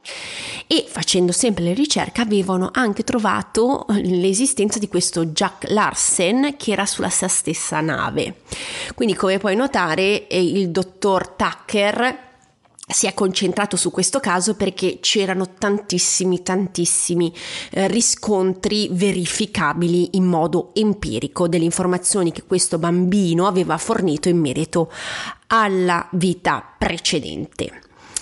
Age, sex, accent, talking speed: 30-49, female, native, 115 wpm